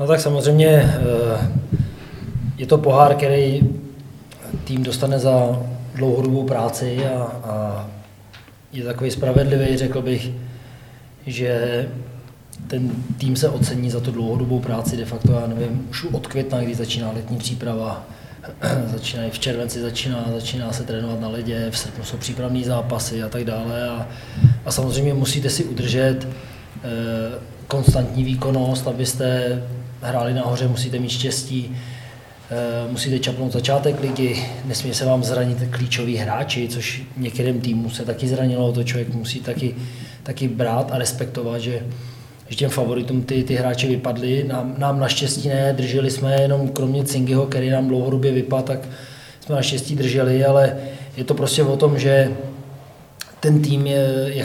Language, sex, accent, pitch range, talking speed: Czech, male, native, 120-135 Hz, 140 wpm